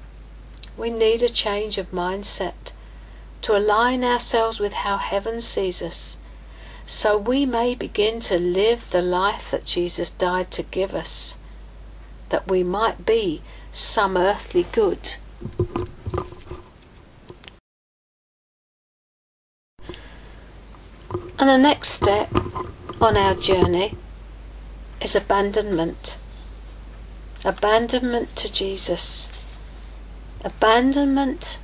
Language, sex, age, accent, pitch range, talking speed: English, female, 50-69, British, 180-250 Hz, 90 wpm